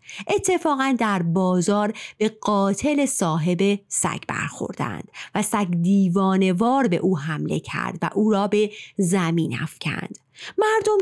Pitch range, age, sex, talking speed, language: 185-255 Hz, 30-49, female, 120 wpm, Persian